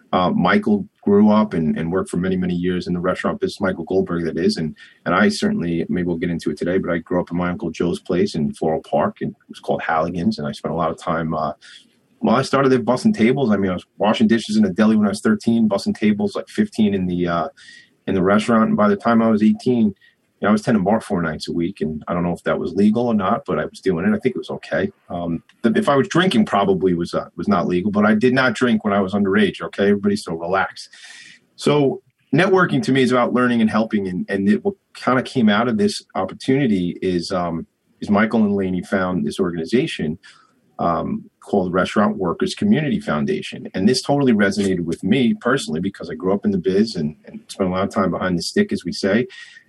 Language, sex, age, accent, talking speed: English, male, 30-49, American, 250 wpm